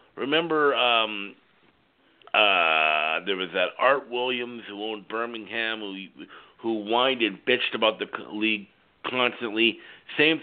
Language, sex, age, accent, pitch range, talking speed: English, male, 50-69, American, 110-130 Hz, 120 wpm